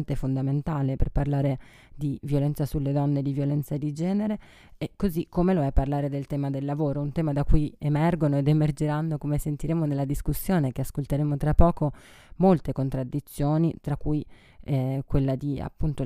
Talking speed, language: 170 wpm, Italian